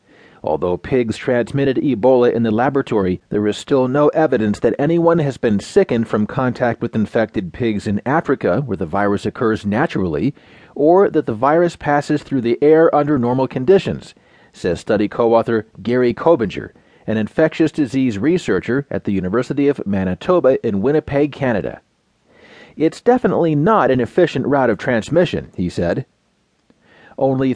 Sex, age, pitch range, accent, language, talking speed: male, 40-59, 110-150 Hz, American, English, 150 wpm